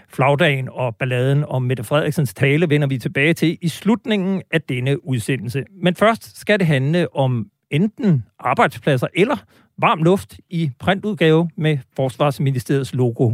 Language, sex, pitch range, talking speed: Danish, male, 130-170 Hz, 145 wpm